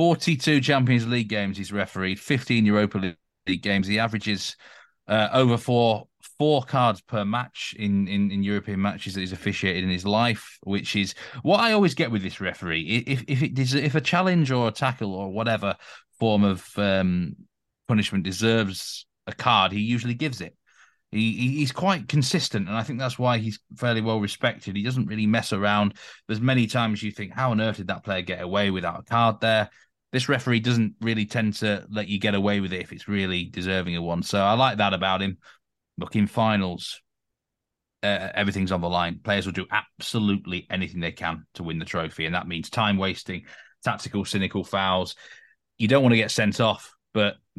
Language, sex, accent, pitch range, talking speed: English, male, British, 95-120 Hz, 195 wpm